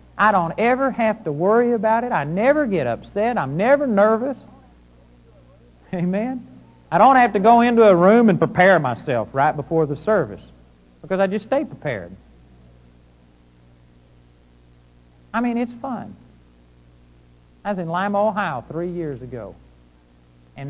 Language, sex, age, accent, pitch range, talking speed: English, male, 60-79, American, 125-185 Hz, 140 wpm